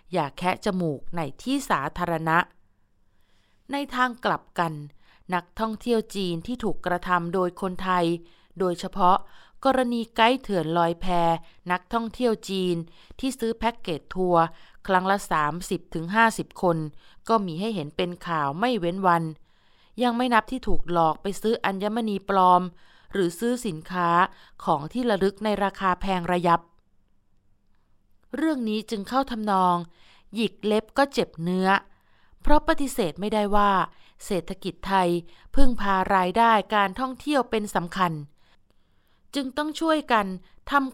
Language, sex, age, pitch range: Thai, female, 20-39, 170-225 Hz